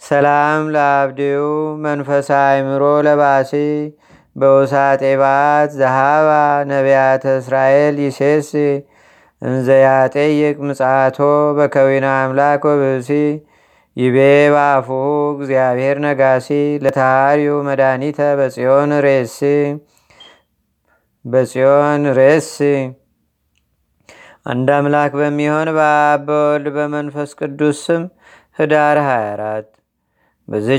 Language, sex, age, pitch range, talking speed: Amharic, male, 30-49, 135-150 Hz, 60 wpm